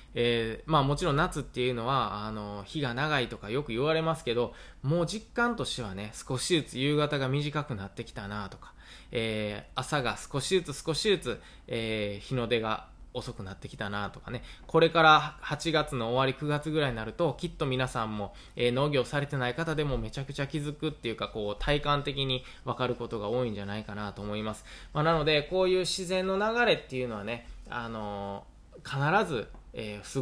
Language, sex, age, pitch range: Japanese, male, 20-39, 115-155 Hz